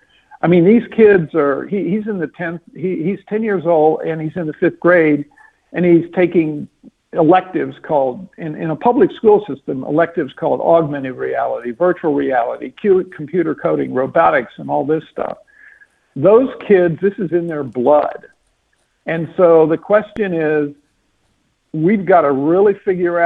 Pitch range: 145-180 Hz